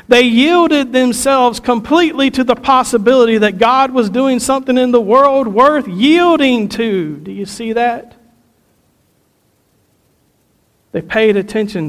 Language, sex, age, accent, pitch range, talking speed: English, male, 50-69, American, 205-255 Hz, 125 wpm